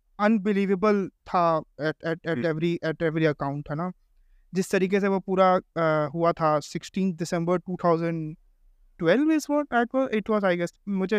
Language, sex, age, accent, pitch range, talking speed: Hindi, male, 20-39, native, 170-225 Hz, 80 wpm